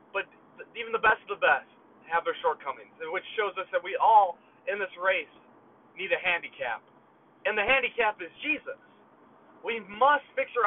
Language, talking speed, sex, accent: English, 170 wpm, male, American